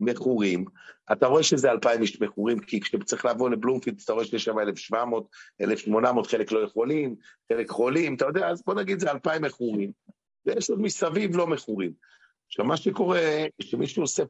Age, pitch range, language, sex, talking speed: 50-69, 110-150 Hz, Hebrew, male, 170 wpm